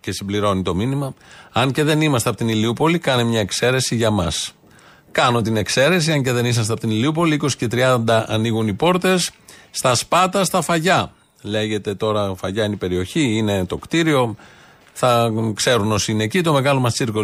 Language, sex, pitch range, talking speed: Greek, male, 110-155 Hz, 190 wpm